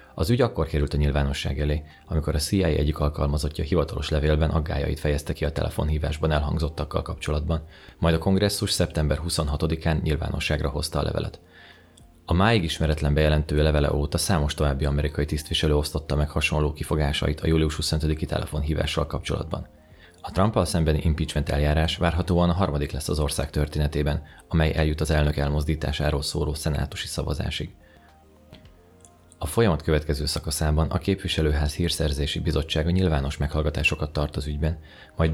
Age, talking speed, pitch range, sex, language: 30-49, 140 wpm, 75-85 Hz, male, Hungarian